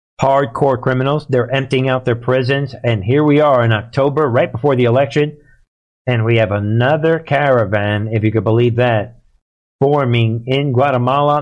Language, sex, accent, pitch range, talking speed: English, male, American, 110-135 Hz, 160 wpm